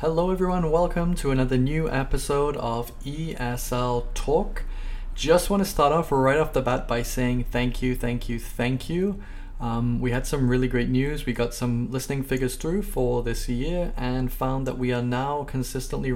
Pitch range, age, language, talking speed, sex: 120-130 Hz, 20-39, English, 185 wpm, male